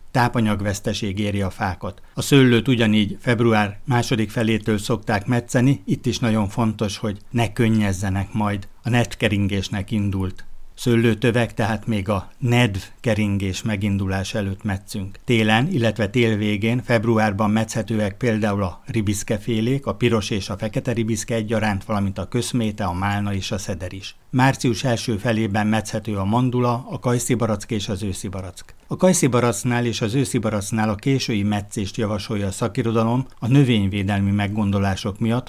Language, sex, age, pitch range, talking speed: Hungarian, male, 60-79, 105-120 Hz, 140 wpm